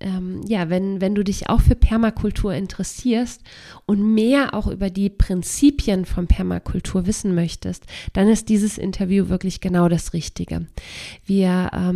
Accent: German